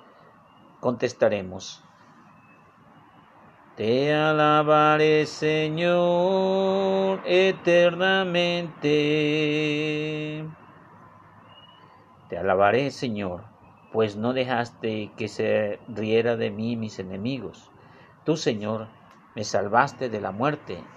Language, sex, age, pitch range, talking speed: Spanish, male, 50-69, 120-170 Hz, 70 wpm